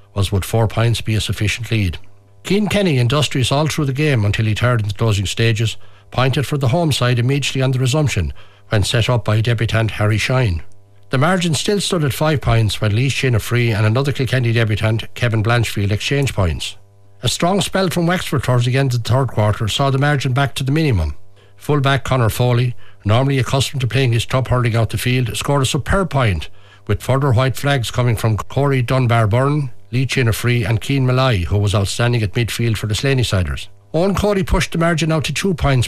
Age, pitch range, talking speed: 60-79, 105-135 Hz, 210 wpm